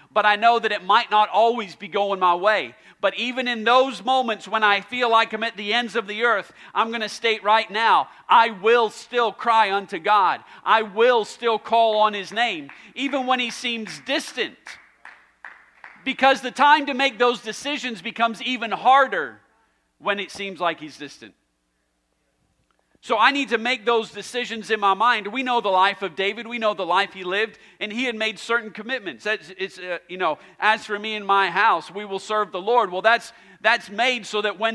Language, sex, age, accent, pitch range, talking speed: English, male, 40-59, American, 200-235 Hz, 200 wpm